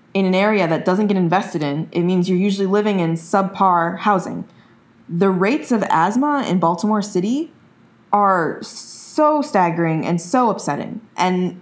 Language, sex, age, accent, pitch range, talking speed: English, female, 20-39, American, 170-215 Hz, 155 wpm